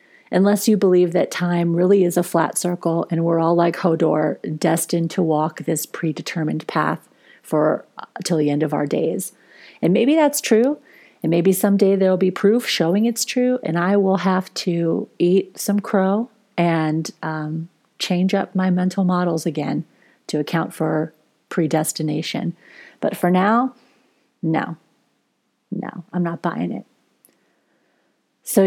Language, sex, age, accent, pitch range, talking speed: English, female, 40-59, American, 160-200 Hz, 150 wpm